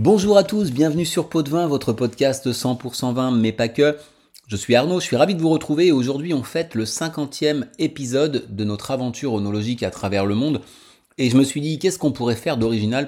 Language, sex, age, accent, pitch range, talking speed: French, male, 30-49, French, 110-145 Hz, 220 wpm